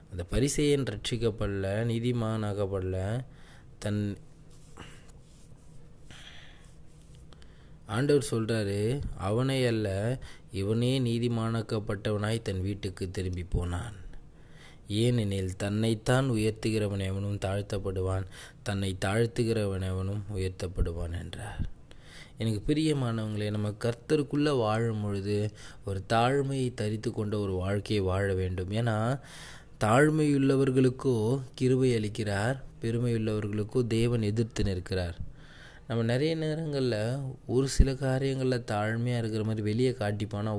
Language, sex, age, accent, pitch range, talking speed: Tamil, male, 20-39, native, 100-125 Hz, 85 wpm